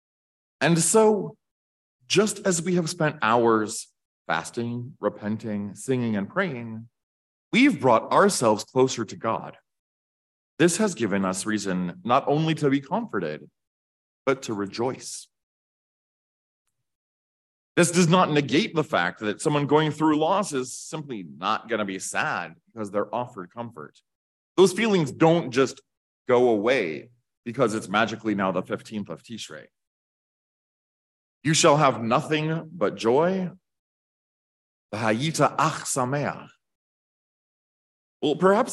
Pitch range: 105-160 Hz